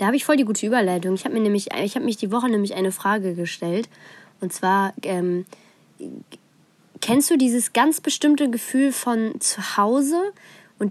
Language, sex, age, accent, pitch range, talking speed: German, female, 20-39, German, 190-235 Hz, 180 wpm